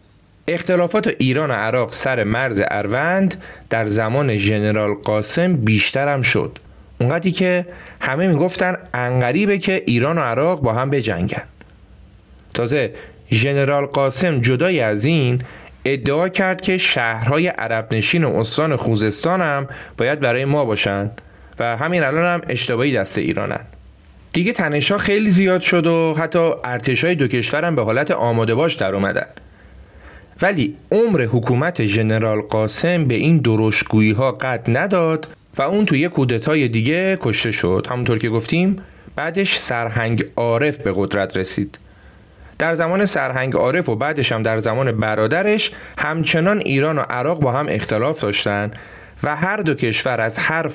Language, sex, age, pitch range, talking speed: Persian, male, 30-49, 110-165 Hz, 140 wpm